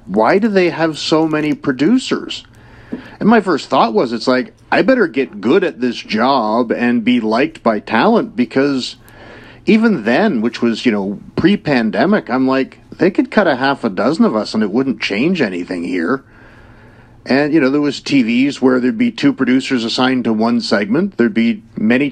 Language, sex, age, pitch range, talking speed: English, male, 50-69, 115-140 Hz, 185 wpm